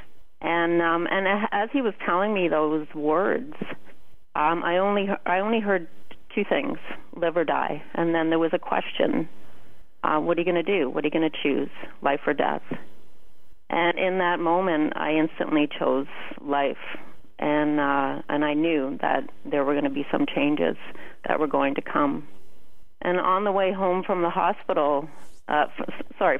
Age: 40-59